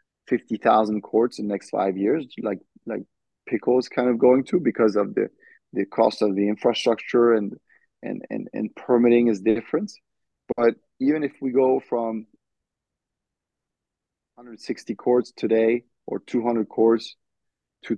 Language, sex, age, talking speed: English, male, 30-49, 145 wpm